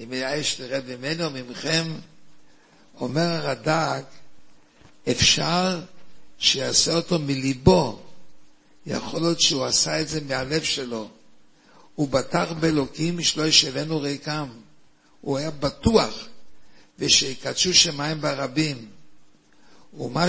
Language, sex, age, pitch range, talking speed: Hebrew, male, 60-79, 130-160 Hz, 100 wpm